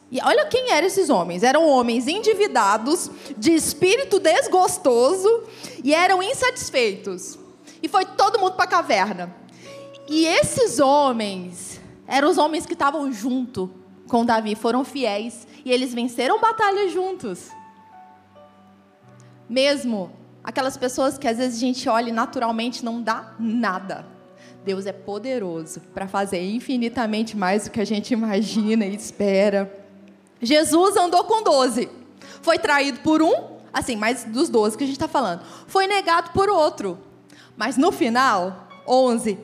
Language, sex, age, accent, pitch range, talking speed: Portuguese, female, 20-39, Brazilian, 220-310 Hz, 140 wpm